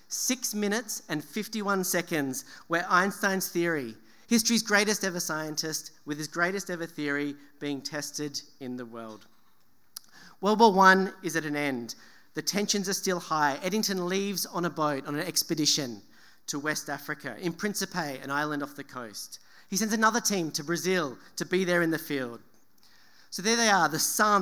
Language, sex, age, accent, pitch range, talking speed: English, male, 40-59, Australian, 145-200 Hz, 170 wpm